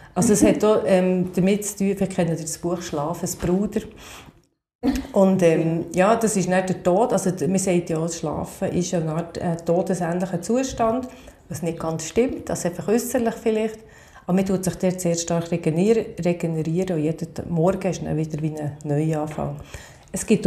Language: German